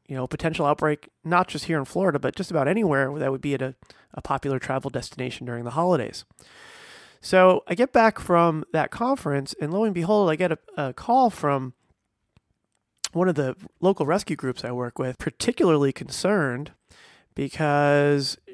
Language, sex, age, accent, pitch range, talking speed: English, male, 30-49, American, 135-170 Hz, 180 wpm